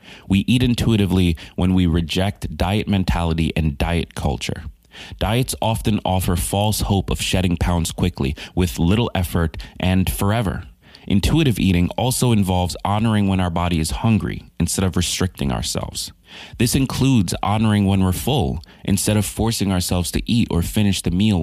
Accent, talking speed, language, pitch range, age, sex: American, 155 wpm, English, 85-105 Hz, 30-49, male